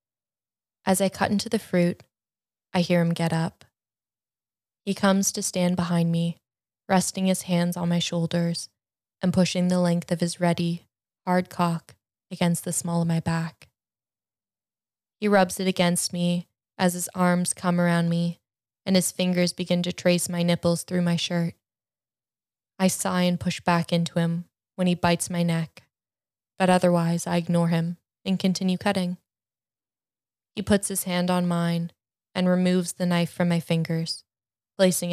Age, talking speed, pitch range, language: 20-39, 160 wpm, 140-180 Hz, English